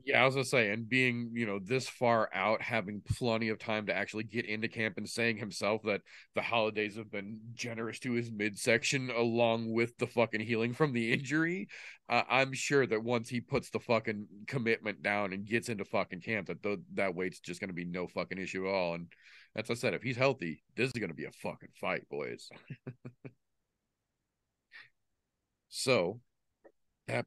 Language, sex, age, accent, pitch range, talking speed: English, male, 40-59, American, 100-120 Hz, 190 wpm